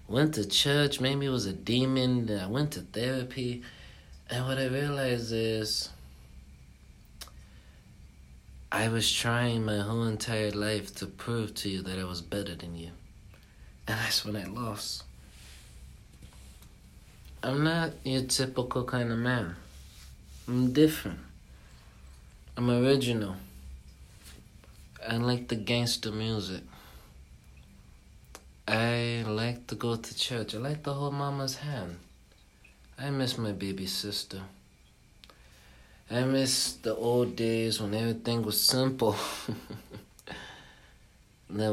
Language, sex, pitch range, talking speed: English, male, 75-120 Hz, 120 wpm